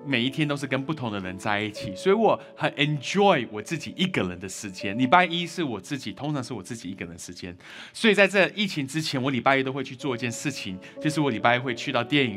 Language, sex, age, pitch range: Chinese, male, 20-39, 115-180 Hz